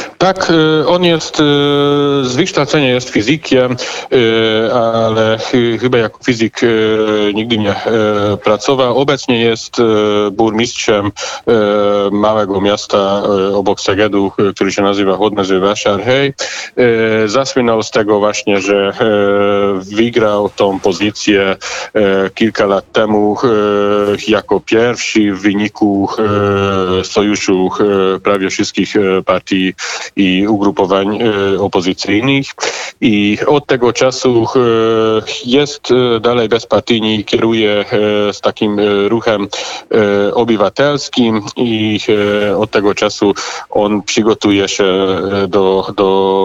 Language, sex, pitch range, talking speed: Polish, male, 100-115 Hz, 100 wpm